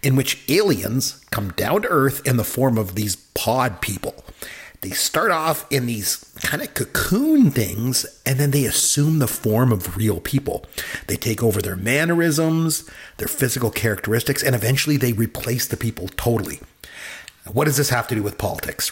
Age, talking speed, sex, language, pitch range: 40-59, 175 wpm, male, English, 110-140 Hz